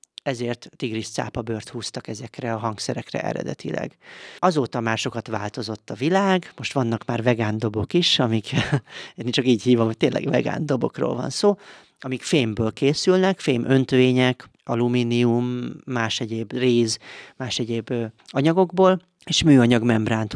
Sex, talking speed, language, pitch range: male, 125 wpm, Hungarian, 110-130 Hz